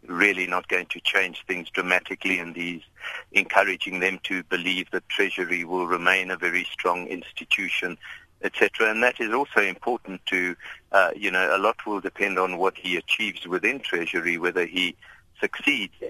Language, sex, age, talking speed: English, male, 50-69, 165 wpm